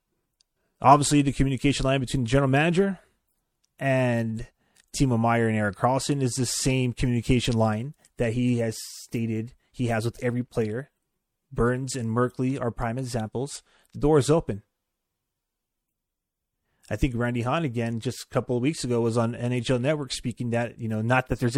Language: English